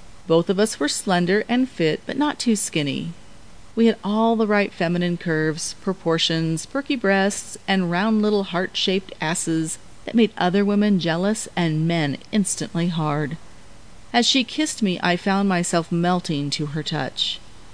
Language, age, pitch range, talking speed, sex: English, 40-59, 155-205 Hz, 155 wpm, female